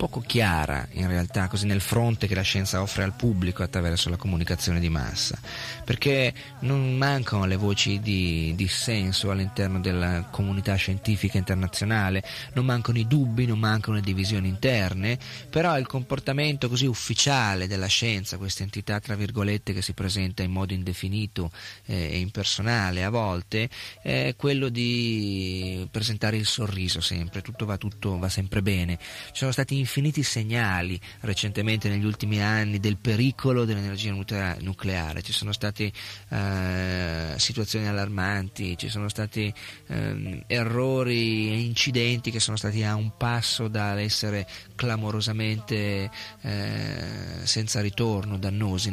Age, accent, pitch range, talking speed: 30-49, native, 95-115 Hz, 135 wpm